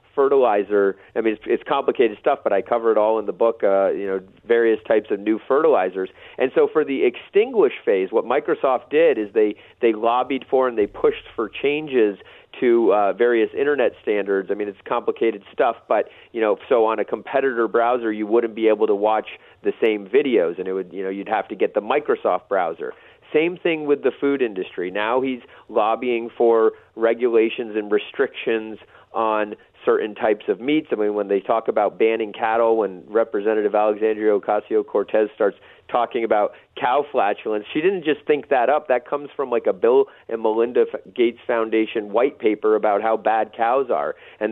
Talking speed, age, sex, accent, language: 190 wpm, 30-49, male, American, English